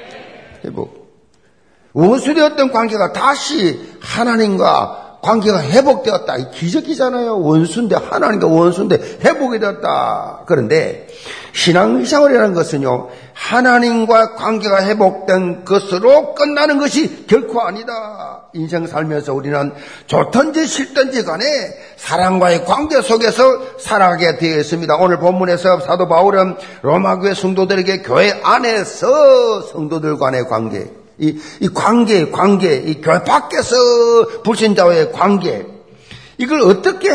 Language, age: Korean, 50-69